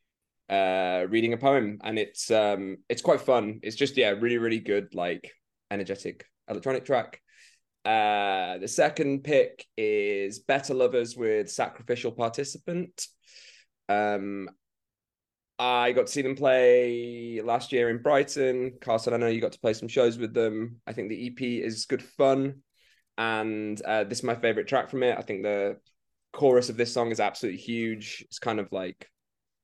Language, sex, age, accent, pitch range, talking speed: English, male, 20-39, British, 105-125 Hz, 165 wpm